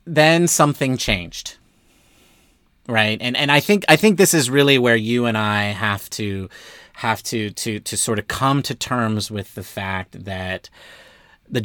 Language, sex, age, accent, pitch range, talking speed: English, male, 30-49, American, 105-150 Hz, 170 wpm